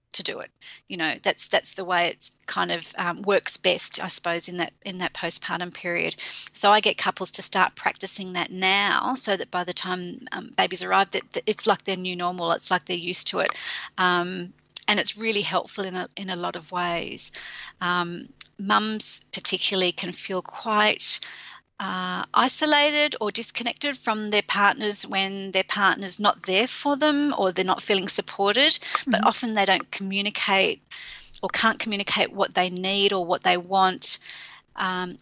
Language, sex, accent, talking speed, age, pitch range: English, female, Australian, 180 wpm, 30-49, 180-205 Hz